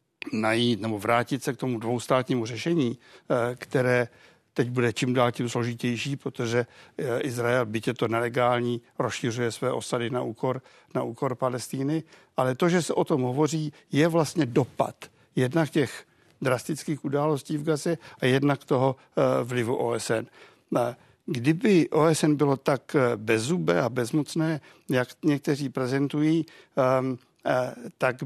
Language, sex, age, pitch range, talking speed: Czech, male, 60-79, 120-145 Hz, 125 wpm